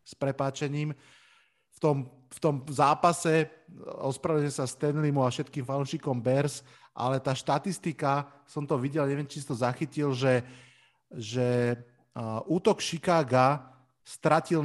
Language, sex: Slovak, male